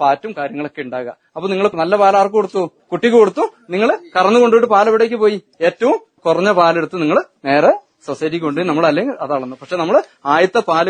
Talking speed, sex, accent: 155 wpm, male, native